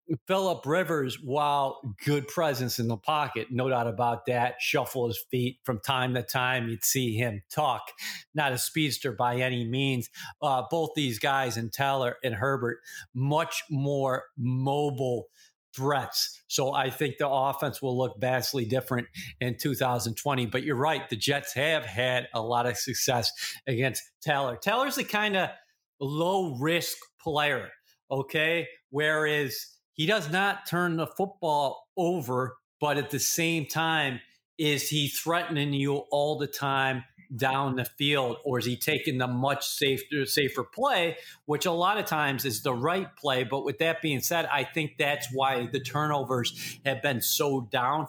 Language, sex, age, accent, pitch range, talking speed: English, male, 40-59, American, 125-155 Hz, 160 wpm